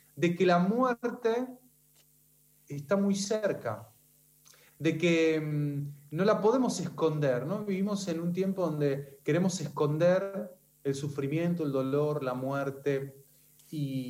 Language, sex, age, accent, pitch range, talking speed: Spanish, male, 30-49, Argentinian, 145-180 Hz, 120 wpm